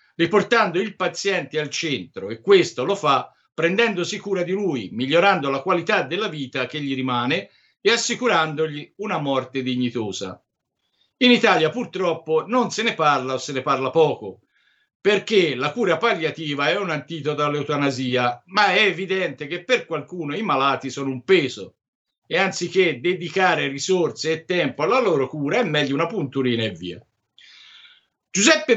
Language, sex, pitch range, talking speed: Italian, male, 140-200 Hz, 150 wpm